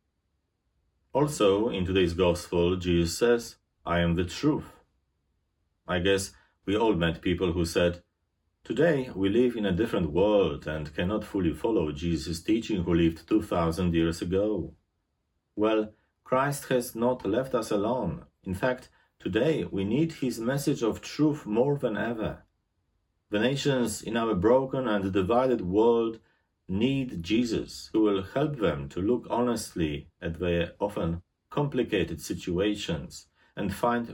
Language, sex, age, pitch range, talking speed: English, male, 40-59, 85-115 Hz, 140 wpm